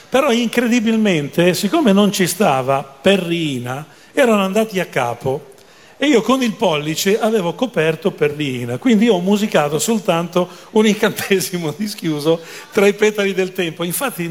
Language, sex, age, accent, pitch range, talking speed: Italian, male, 40-59, native, 150-205 Hz, 140 wpm